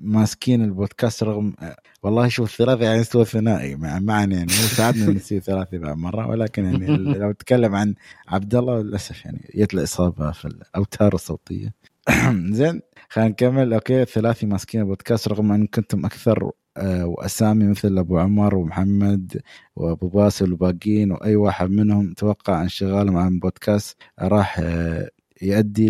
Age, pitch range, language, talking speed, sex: 20-39, 95-110 Hz, Arabic, 135 wpm, male